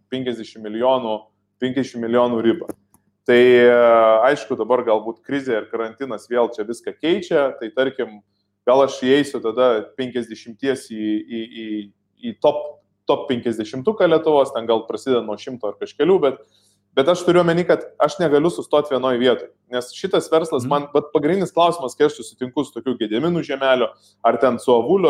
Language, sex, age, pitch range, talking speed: English, male, 20-39, 120-175 Hz, 155 wpm